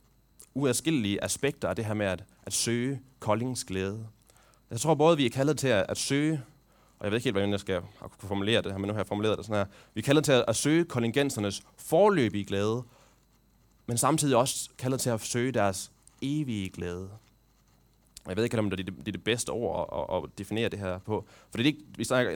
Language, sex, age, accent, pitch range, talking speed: Danish, male, 20-39, native, 100-135 Hz, 230 wpm